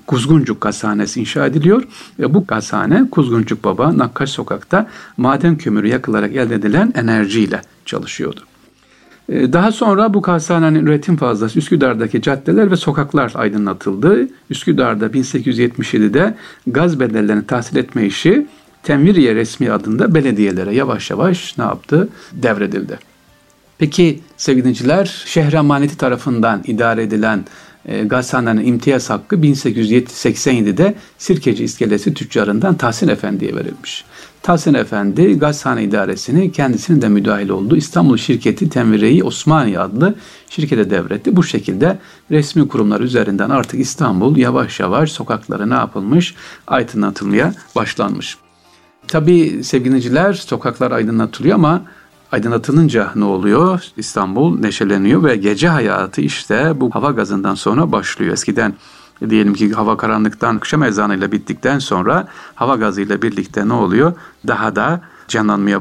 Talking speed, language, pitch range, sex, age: 115 wpm, Turkish, 105-155 Hz, male, 60-79